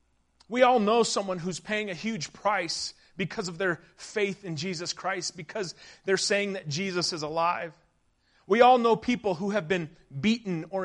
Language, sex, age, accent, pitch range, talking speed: English, male, 30-49, American, 180-250 Hz, 175 wpm